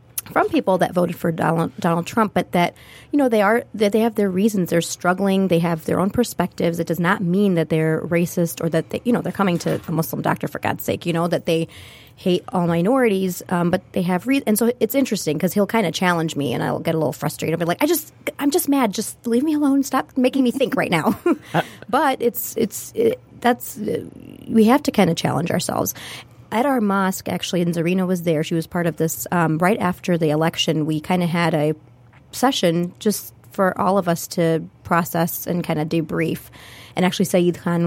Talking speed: 225 wpm